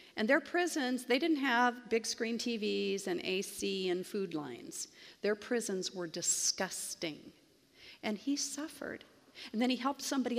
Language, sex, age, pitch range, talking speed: English, female, 50-69, 195-260 Hz, 150 wpm